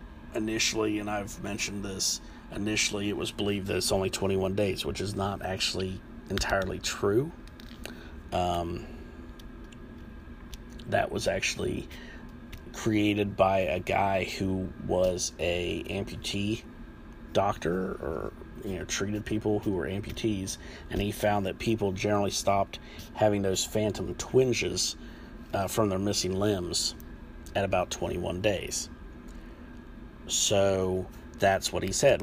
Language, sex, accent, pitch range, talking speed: English, male, American, 90-105 Hz, 125 wpm